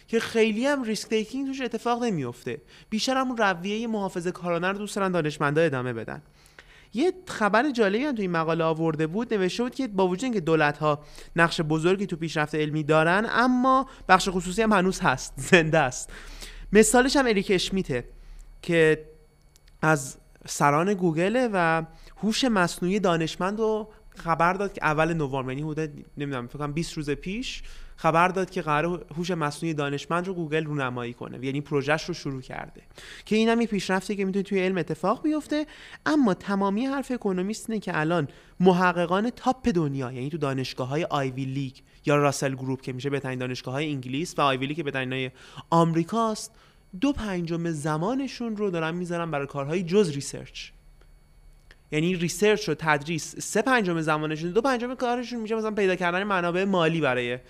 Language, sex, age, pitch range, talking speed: Persian, male, 20-39, 150-210 Hz, 165 wpm